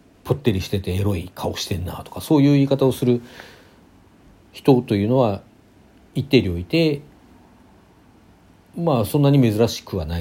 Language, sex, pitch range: Japanese, male, 90-130 Hz